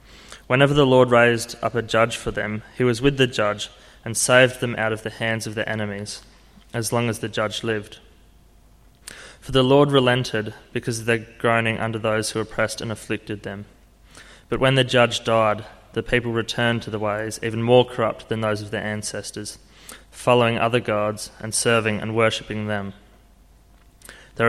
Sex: male